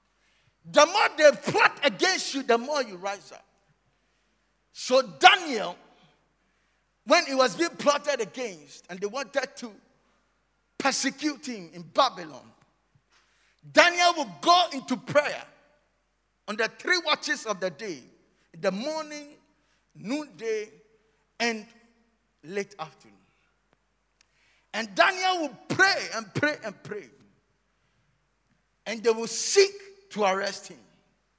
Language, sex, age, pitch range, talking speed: English, male, 50-69, 215-300 Hz, 115 wpm